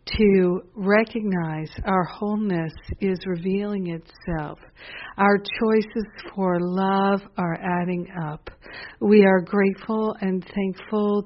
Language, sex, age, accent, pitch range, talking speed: English, female, 60-79, American, 175-200 Hz, 100 wpm